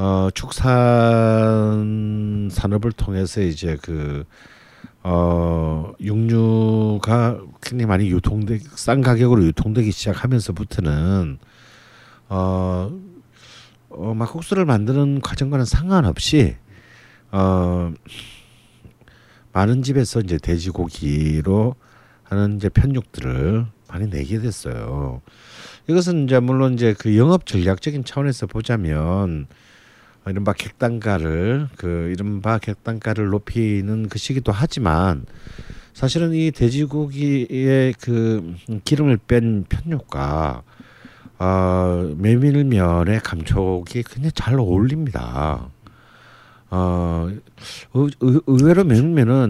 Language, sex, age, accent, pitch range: Korean, male, 50-69, native, 90-125 Hz